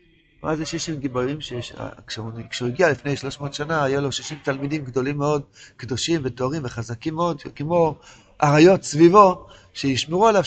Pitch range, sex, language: 140-185 Hz, male, Hebrew